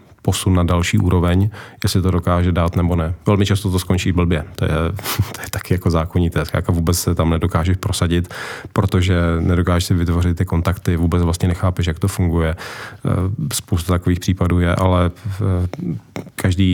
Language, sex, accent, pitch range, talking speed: Czech, male, native, 90-100 Hz, 165 wpm